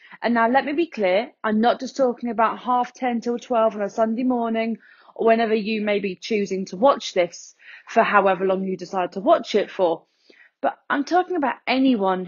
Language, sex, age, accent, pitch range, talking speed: English, female, 30-49, British, 215-265 Hz, 205 wpm